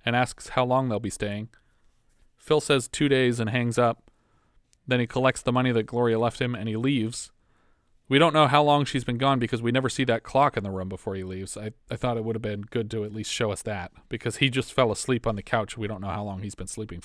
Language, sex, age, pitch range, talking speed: English, male, 30-49, 110-130 Hz, 270 wpm